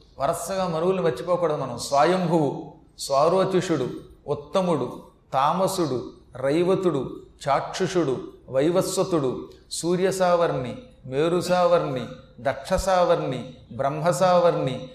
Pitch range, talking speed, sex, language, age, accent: 150-195 Hz, 60 wpm, male, Telugu, 40-59, native